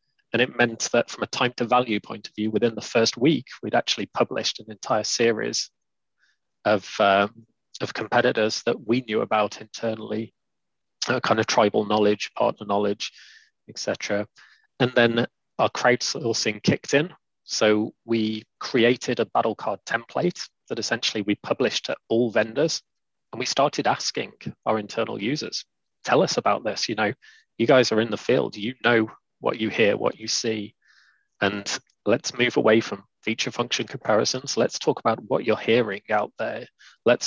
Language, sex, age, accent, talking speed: English, male, 20-39, British, 165 wpm